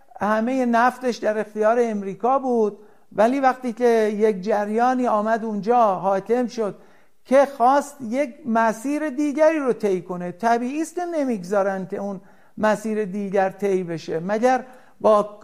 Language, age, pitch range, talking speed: Persian, 60-79, 220-270 Hz, 130 wpm